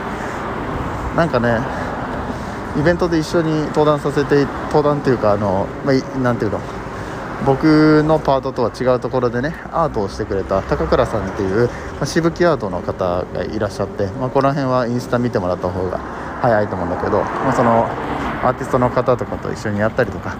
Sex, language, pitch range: male, Japanese, 100-140 Hz